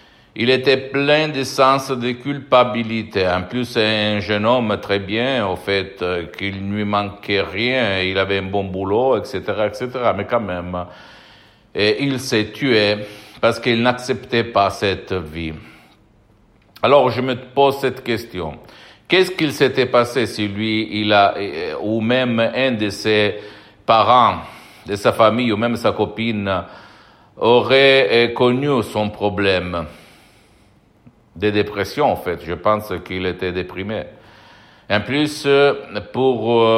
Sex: male